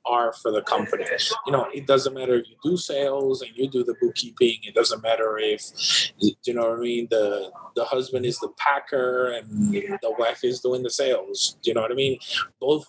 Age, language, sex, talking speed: 30-49, English, male, 220 wpm